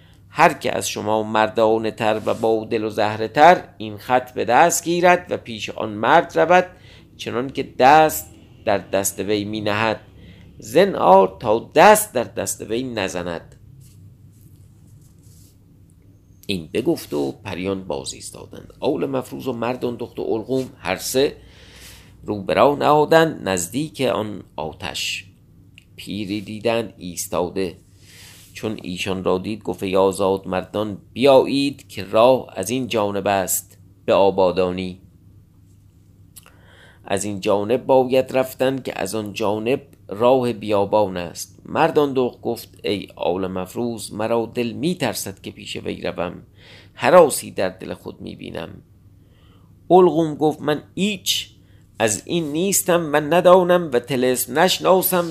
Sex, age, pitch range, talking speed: male, 50-69, 95-130 Hz, 130 wpm